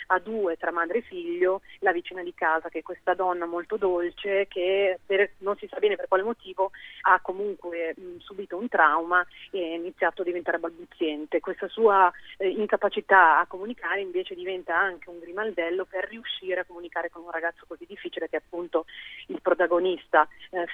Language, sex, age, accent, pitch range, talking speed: Italian, female, 30-49, native, 170-200 Hz, 180 wpm